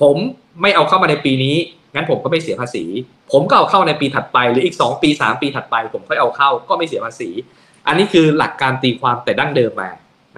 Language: Thai